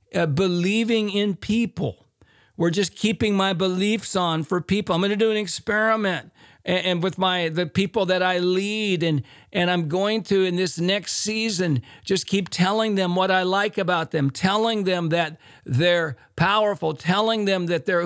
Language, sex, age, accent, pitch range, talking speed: English, male, 50-69, American, 170-215 Hz, 180 wpm